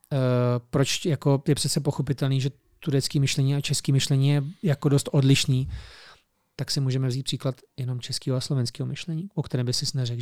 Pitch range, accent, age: 125-145 Hz, native, 30-49